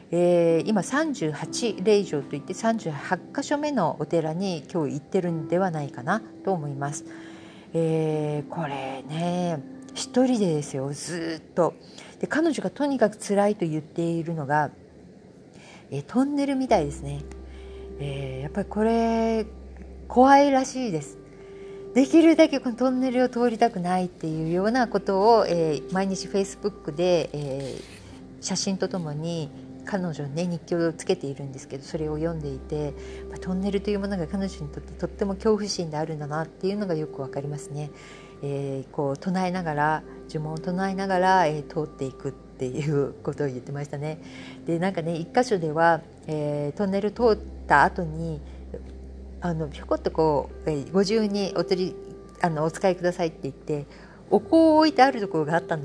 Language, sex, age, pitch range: Japanese, female, 50-69, 150-200 Hz